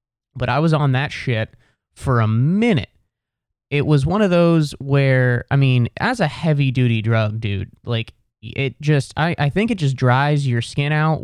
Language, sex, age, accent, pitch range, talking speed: English, male, 20-39, American, 115-135 Hz, 185 wpm